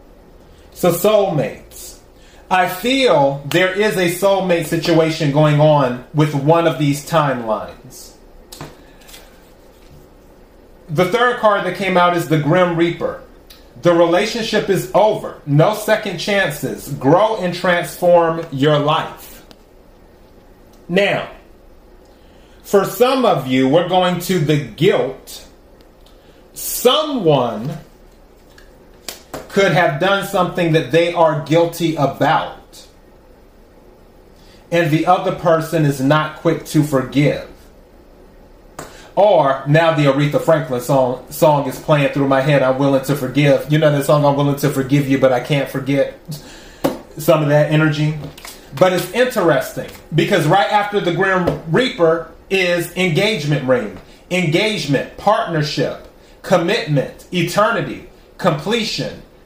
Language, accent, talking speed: English, American, 120 wpm